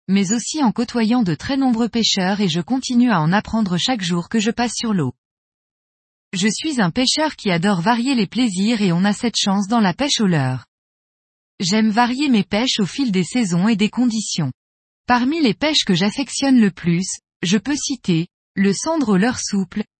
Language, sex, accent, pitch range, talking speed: French, female, French, 180-245 Hz, 200 wpm